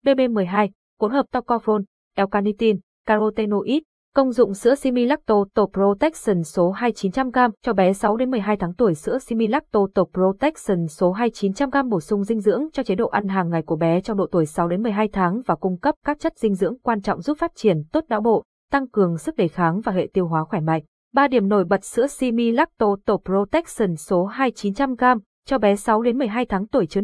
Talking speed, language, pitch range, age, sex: 200 wpm, Vietnamese, 195-255 Hz, 20-39, female